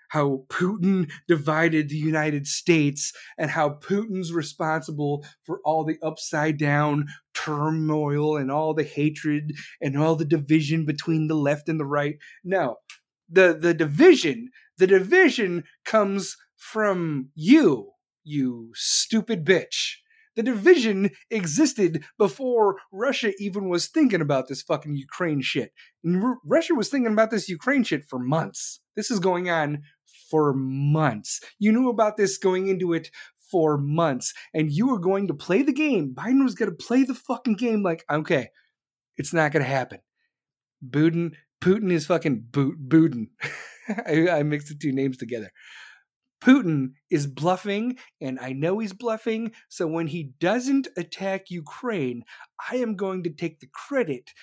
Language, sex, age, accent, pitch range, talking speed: English, male, 30-49, American, 150-200 Hz, 150 wpm